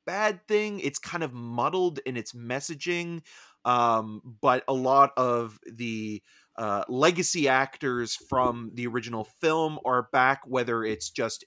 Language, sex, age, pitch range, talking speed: English, male, 30-49, 105-130 Hz, 140 wpm